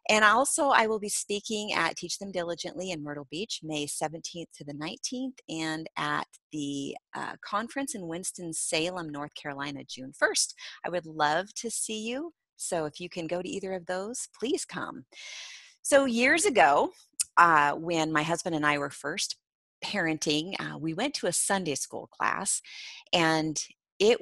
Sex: female